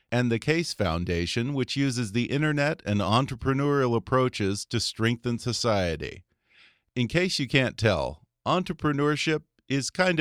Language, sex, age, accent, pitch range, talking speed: English, male, 50-69, American, 105-135 Hz, 130 wpm